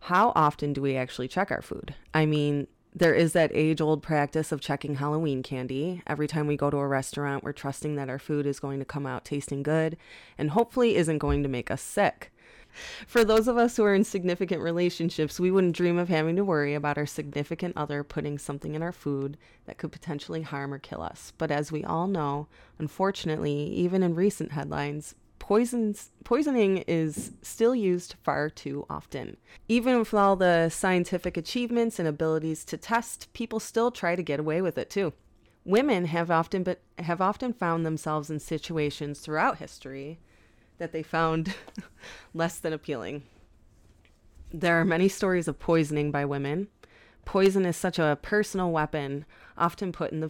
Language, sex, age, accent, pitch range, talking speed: English, female, 20-39, American, 145-180 Hz, 175 wpm